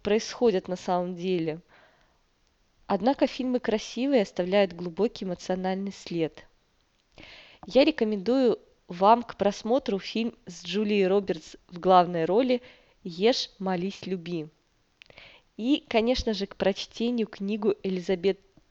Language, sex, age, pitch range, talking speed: Russian, female, 20-39, 185-230 Hz, 105 wpm